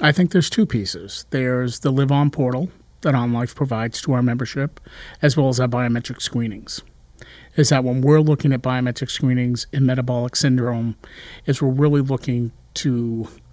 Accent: American